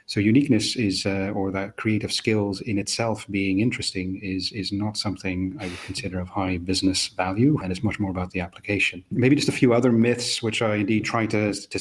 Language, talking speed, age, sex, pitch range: English, 215 wpm, 30-49, male, 95-105 Hz